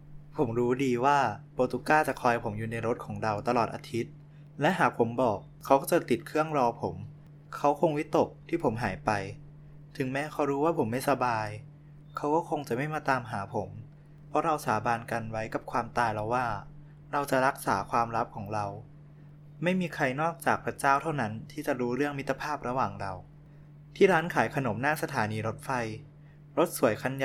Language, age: English, 20-39